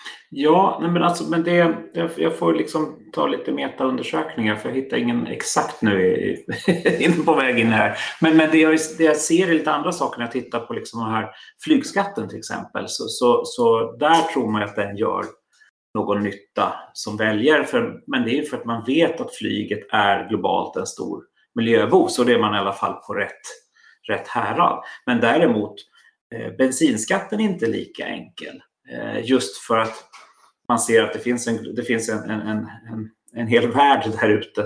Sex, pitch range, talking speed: male, 110-165 Hz, 190 wpm